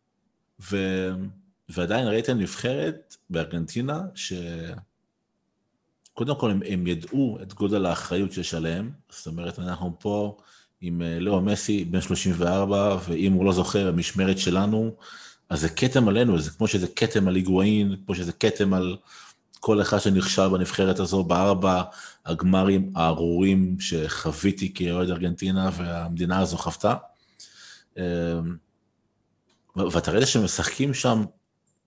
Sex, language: male, Hebrew